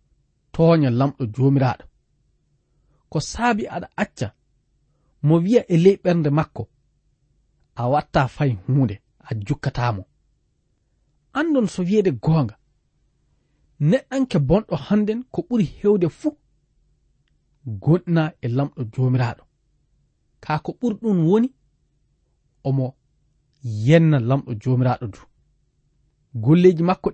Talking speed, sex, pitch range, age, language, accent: 95 wpm, male, 130-185 Hz, 40-59, English, South African